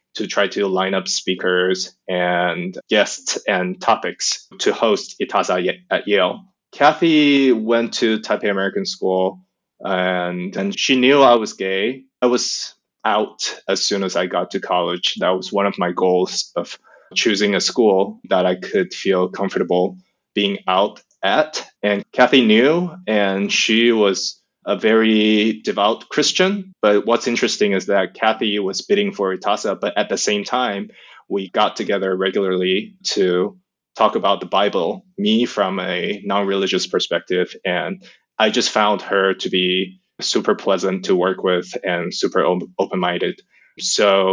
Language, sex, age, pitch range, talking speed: English, male, 20-39, 95-135 Hz, 150 wpm